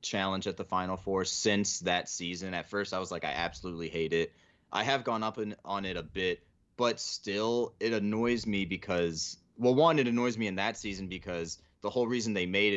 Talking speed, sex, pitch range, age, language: 210 wpm, male, 85-100 Hz, 30-49, English